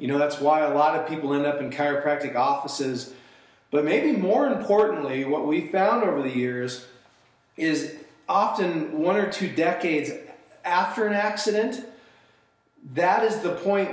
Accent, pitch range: American, 145-180 Hz